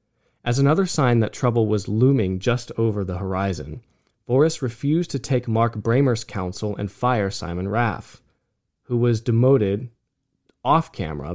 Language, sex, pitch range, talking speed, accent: English, male, 95-125 Hz, 135 wpm, American